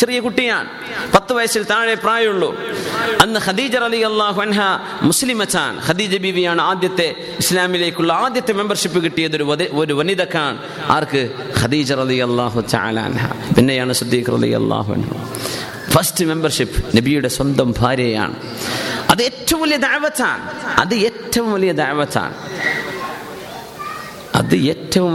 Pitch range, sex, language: 160-225 Hz, male, Malayalam